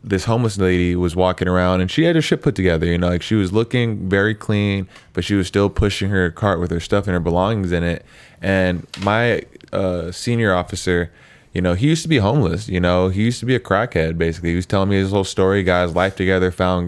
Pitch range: 85-95 Hz